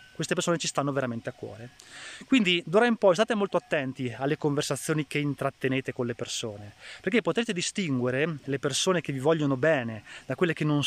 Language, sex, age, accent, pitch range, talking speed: Italian, male, 20-39, native, 130-165 Hz, 190 wpm